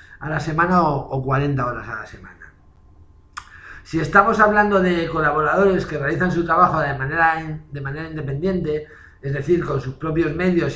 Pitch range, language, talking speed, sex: 140-175 Hz, Spanish, 165 wpm, male